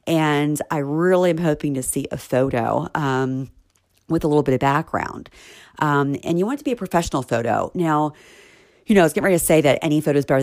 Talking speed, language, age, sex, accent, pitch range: 230 wpm, English, 40-59, female, American, 130-165 Hz